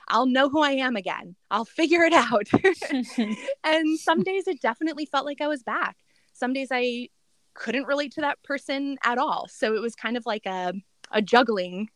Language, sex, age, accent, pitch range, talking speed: English, female, 20-39, American, 195-275 Hz, 195 wpm